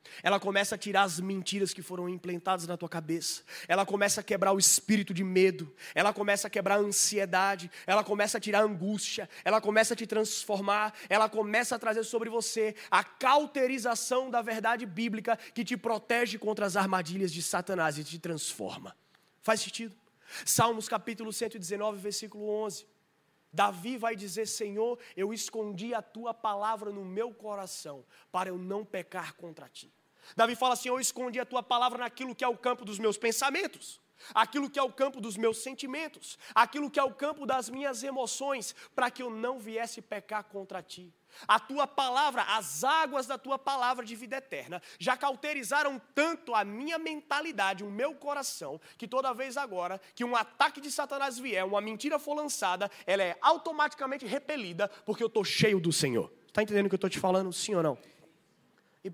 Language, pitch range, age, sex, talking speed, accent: Portuguese, 190-250 Hz, 20-39, male, 185 wpm, Brazilian